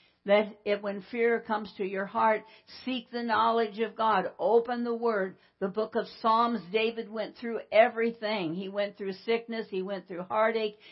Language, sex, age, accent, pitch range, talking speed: English, female, 60-79, American, 190-230 Hz, 170 wpm